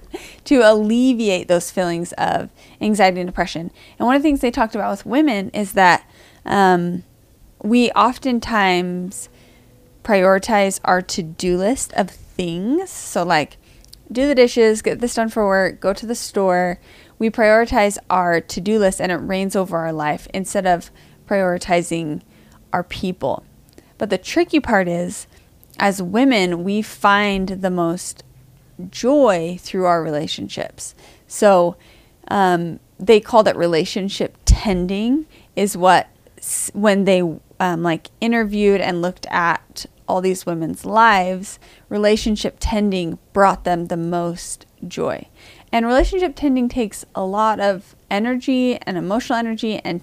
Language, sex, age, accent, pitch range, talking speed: English, female, 20-39, American, 180-225 Hz, 140 wpm